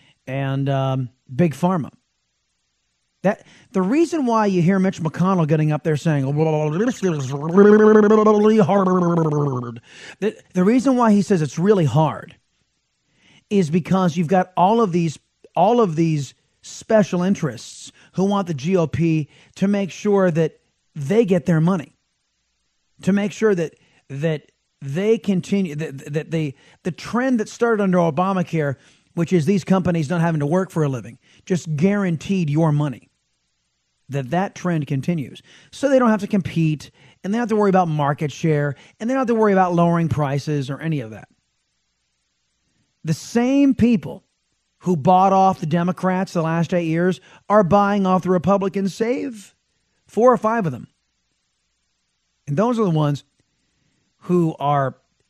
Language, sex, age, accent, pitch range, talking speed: English, male, 40-59, American, 145-195 Hz, 160 wpm